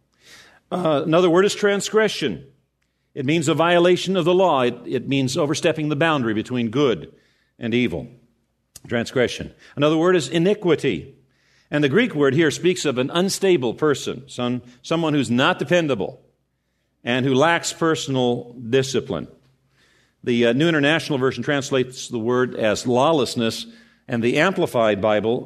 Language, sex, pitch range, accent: English, male, 120-165 Hz, American